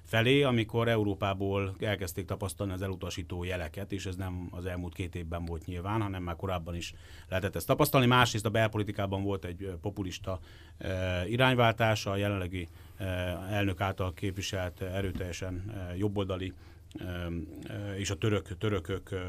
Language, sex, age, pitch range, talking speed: Hungarian, male, 30-49, 95-115 Hz, 125 wpm